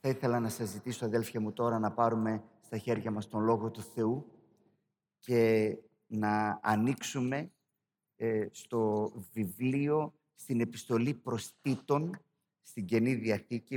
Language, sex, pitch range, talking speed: Greek, male, 115-130 Hz, 120 wpm